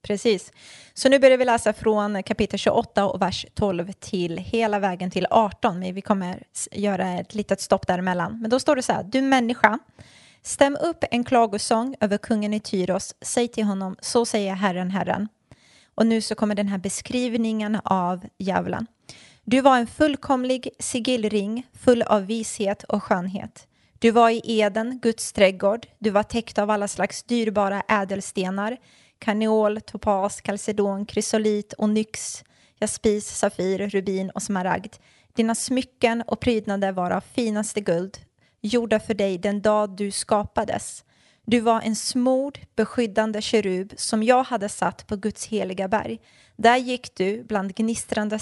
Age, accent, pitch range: 20-39, native, 195-230 Hz